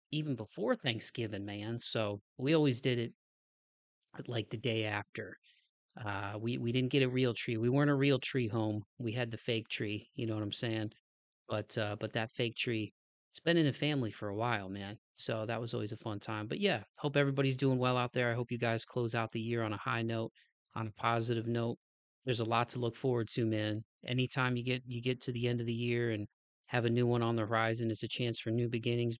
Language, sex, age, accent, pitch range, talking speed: English, male, 30-49, American, 110-130 Hz, 240 wpm